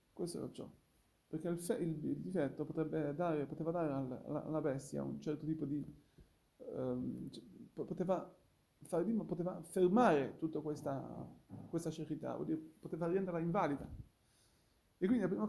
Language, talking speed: Italian, 160 wpm